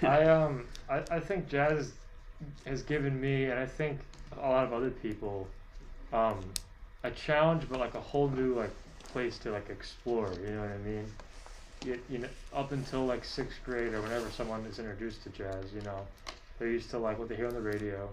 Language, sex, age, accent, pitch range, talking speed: English, male, 20-39, American, 100-125 Hz, 210 wpm